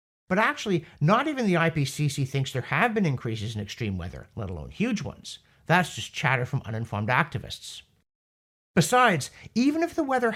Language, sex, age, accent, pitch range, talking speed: English, male, 50-69, American, 120-180 Hz, 170 wpm